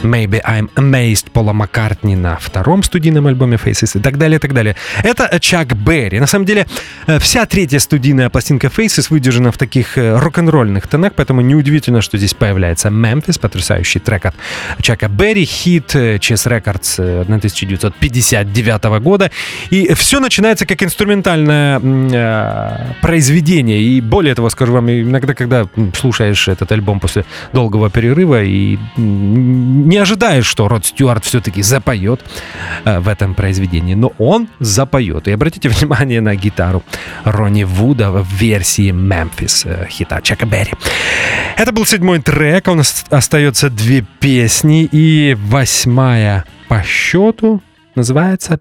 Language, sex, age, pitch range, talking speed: English, male, 30-49, 105-150 Hz, 135 wpm